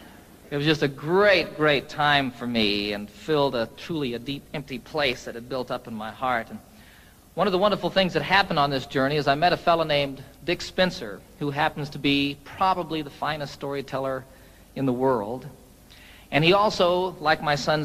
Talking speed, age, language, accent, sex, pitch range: 200 wpm, 50-69, Italian, American, male, 135-165 Hz